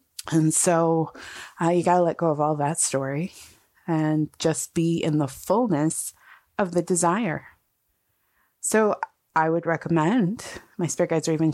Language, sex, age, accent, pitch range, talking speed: English, female, 30-49, American, 160-190 Hz, 155 wpm